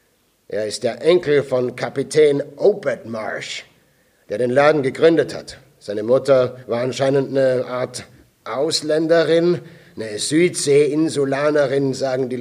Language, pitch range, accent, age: German, 130-170 Hz, German, 50-69